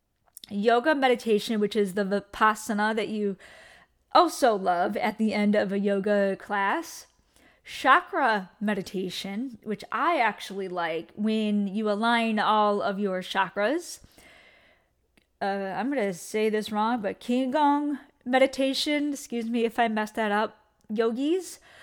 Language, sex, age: English, female, 20-39